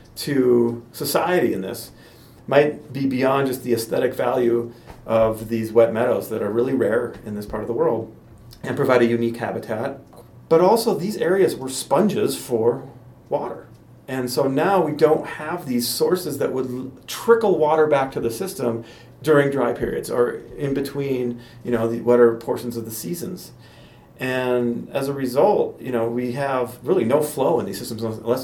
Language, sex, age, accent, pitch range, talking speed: English, male, 40-59, American, 115-135 Hz, 175 wpm